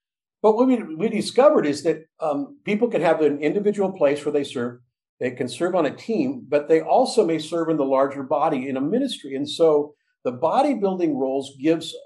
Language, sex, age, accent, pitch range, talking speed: English, male, 50-69, American, 140-185 Hz, 205 wpm